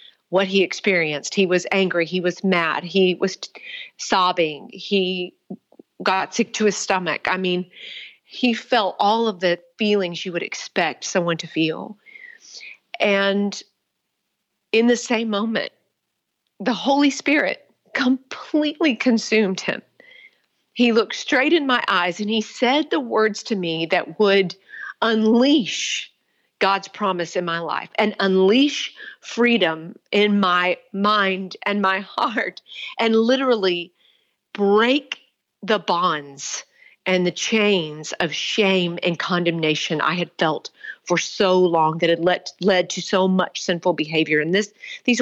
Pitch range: 180-230 Hz